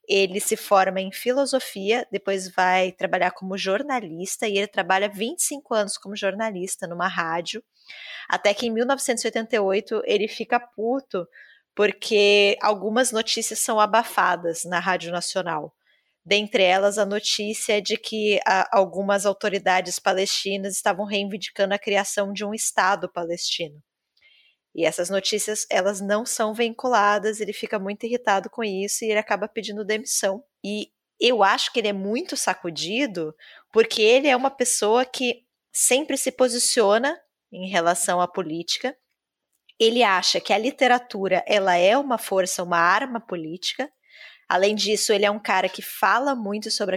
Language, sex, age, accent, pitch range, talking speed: Portuguese, female, 20-39, Brazilian, 190-230 Hz, 145 wpm